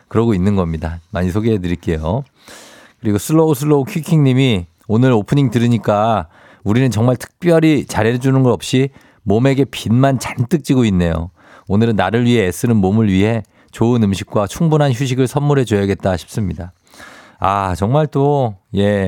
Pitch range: 100-135 Hz